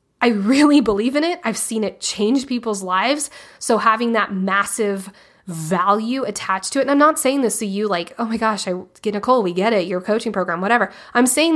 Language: English